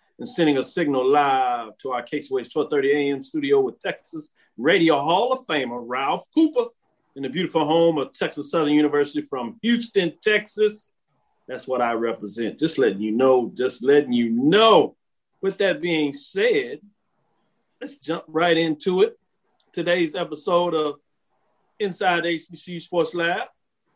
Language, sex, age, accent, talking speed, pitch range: English, male, 50-69, American, 145 wpm, 145-195 Hz